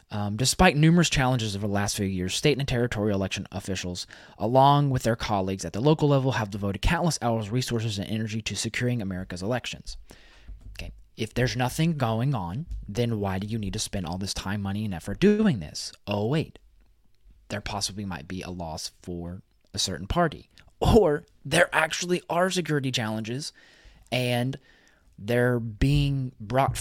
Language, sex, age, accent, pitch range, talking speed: English, male, 20-39, American, 95-130 Hz, 170 wpm